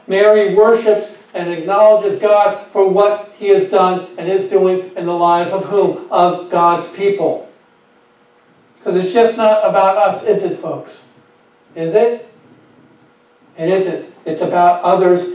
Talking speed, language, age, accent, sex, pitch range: 145 wpm, English, 50-69, American, male, 165-205 Hz